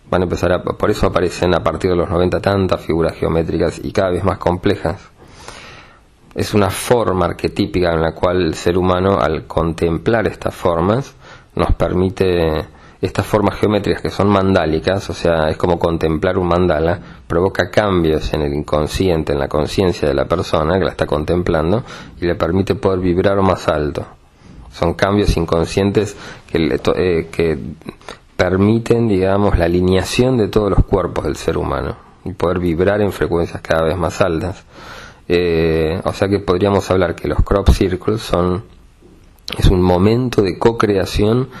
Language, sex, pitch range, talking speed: English, male, 85-100 Hz, 160 wpm